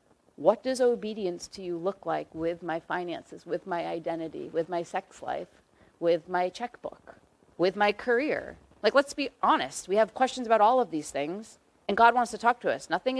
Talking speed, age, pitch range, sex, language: 195 wpm, 30-49, 180-255 Hz, female, English